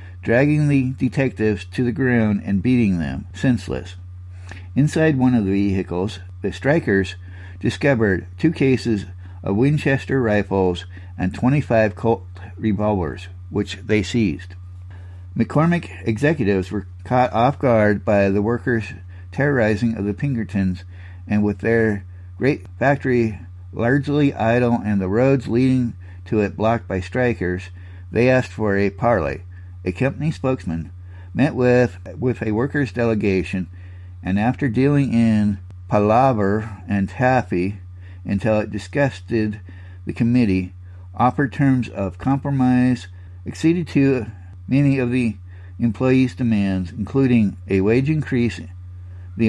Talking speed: 120 wpm